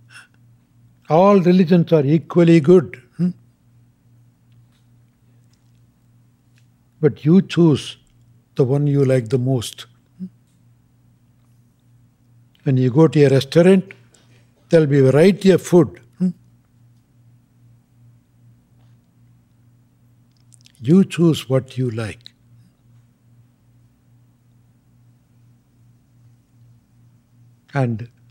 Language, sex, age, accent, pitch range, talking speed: English, male, 60-79, Indian, 120-145 Hz, 75 wpm